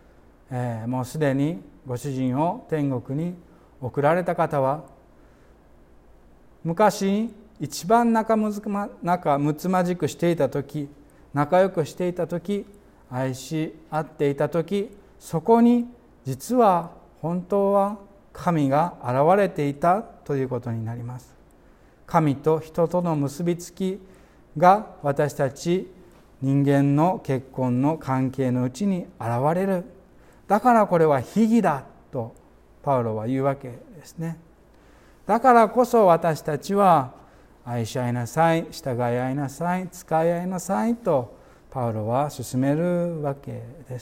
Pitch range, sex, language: 130-180 Hz, male, Japanese